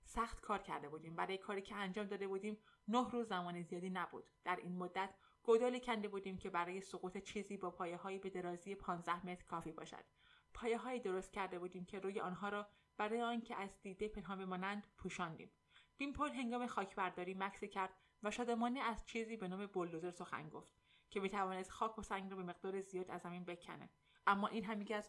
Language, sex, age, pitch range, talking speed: Persian, female, 20-39, 185-225 Hz, 190 wpm